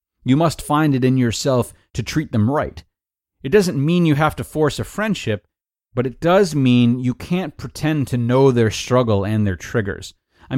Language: English